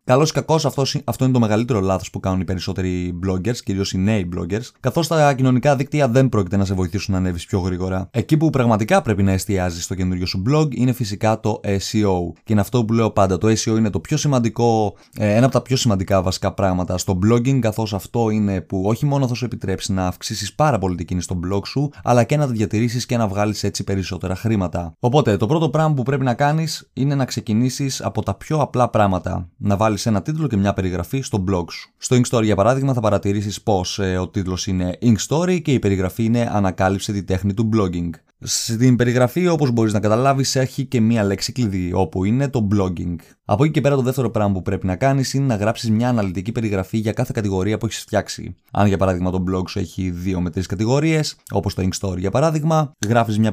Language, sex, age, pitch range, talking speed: Greek, male, 20-39, 95-125 Hz, 220 wpm